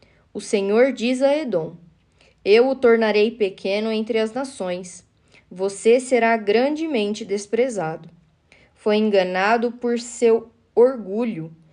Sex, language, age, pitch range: female, Portuguese, 10-29, 195-240 Hz